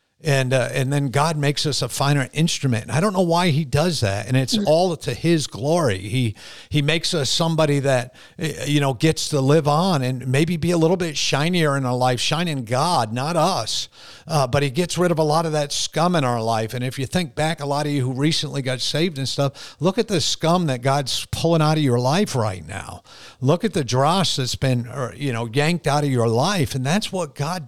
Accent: American